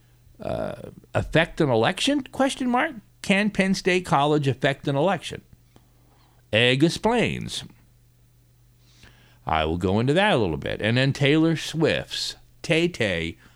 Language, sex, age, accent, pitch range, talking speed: English, male, 50-69, American, 95-135 Hz, 125 wpm